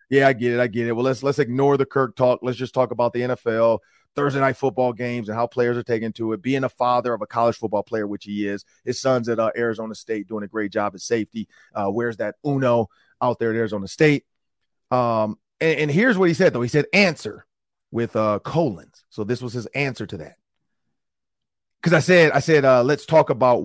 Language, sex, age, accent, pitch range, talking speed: English, male, 30-49, American, 110-150 Hz, 235 wpm